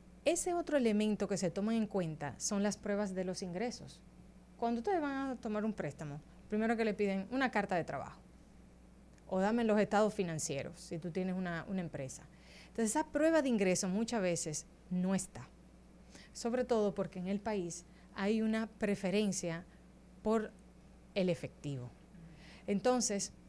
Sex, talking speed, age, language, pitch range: female, 160 wpm, 30-49, Spanish, 180-225 Hz